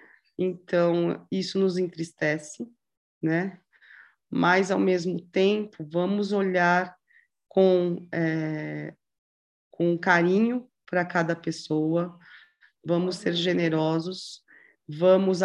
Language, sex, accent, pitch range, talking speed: Portuguese, female, Brazilian, 170-195 Hz, 80 wpm